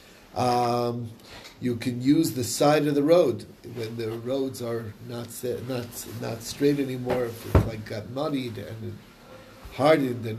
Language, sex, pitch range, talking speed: English, male, 110-130 Hz, 160 wpm